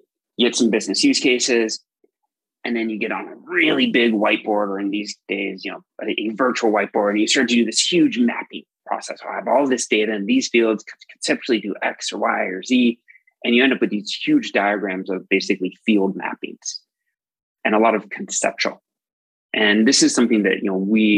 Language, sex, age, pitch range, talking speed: English, male, 30-49, 100-125 Hz, 210 wpm